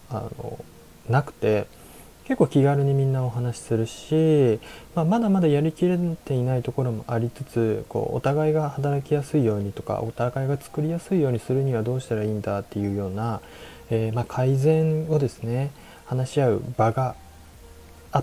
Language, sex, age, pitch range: Japanese, male, 20-39, 105-135 Hz